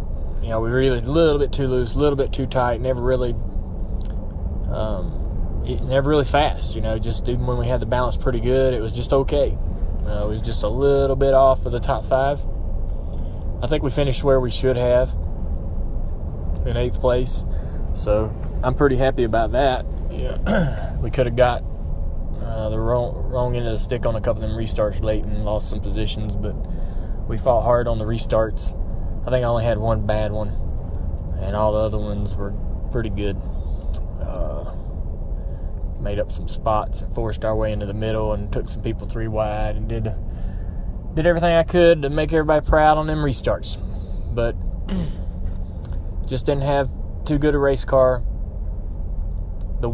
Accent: American